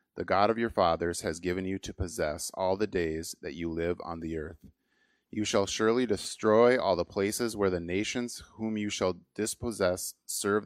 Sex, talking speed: male, 190 wpm